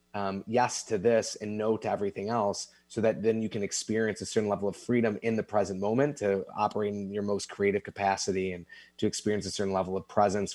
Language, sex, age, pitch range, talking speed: English, male, 30-49, 100-130 Hz, 220 wpm